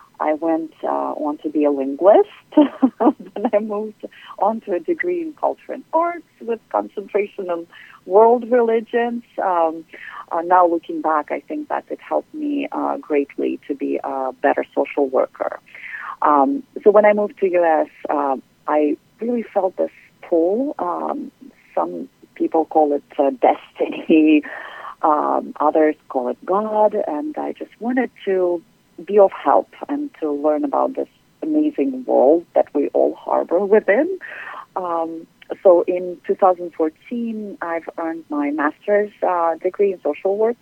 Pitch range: 155-255 Hz